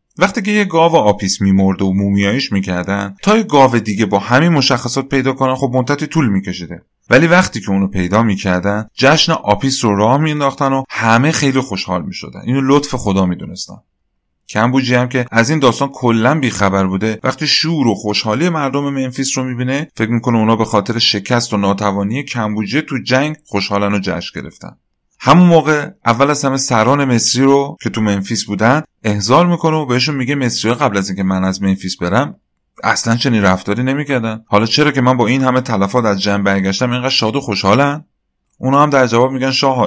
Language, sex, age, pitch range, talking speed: Persian, male, 30-49, 100-140 Hz, 190 wpm